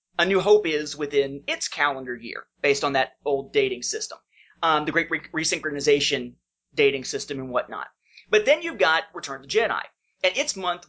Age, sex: 30-49, male